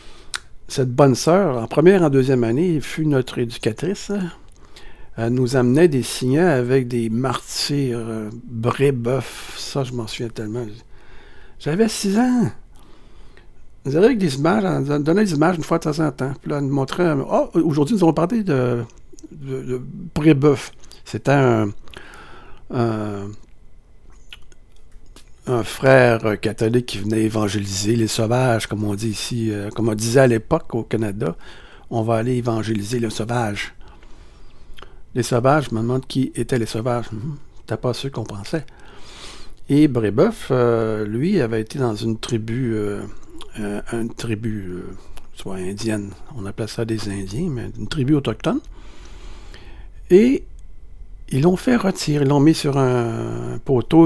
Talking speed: 155 wpm